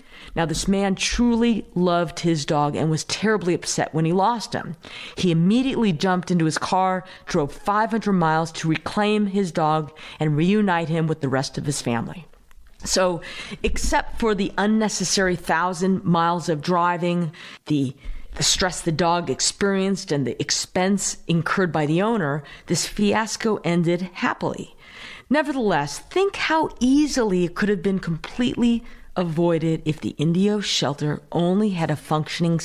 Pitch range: 155-195 Hz